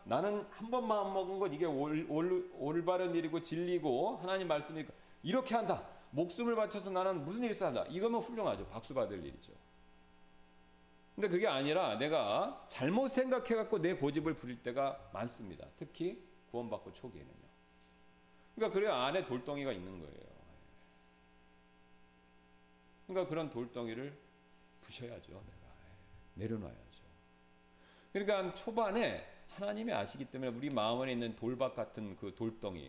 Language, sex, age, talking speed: English, male, 40-59, 115 wpm